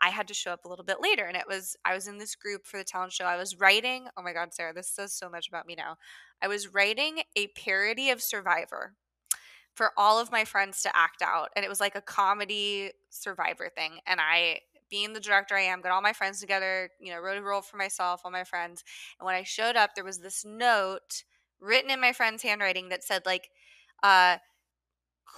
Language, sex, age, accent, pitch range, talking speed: English, female, 20-39, American, 190-275 Hz, 230 wpm